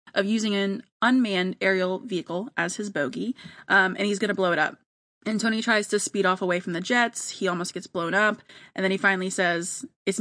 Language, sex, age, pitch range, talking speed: English, female, 20-39, 180-225 Hz, 215 wpm